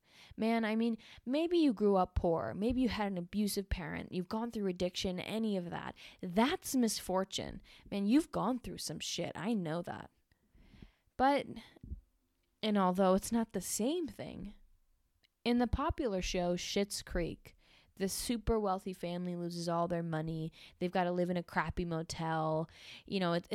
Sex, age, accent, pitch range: female, 20-39, American, 175-230 Hz